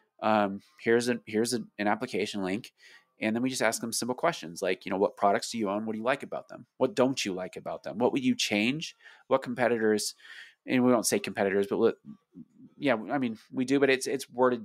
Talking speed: 240 wpm